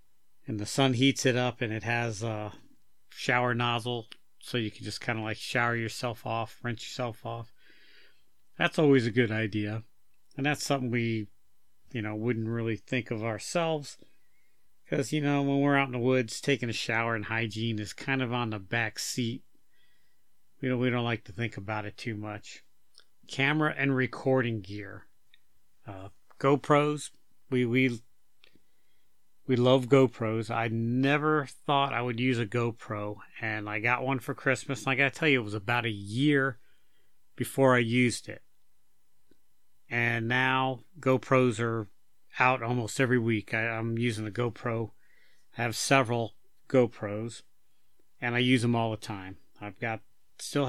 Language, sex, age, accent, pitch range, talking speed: English, male, 40-59, American, 110-130 Hz, 165 wpm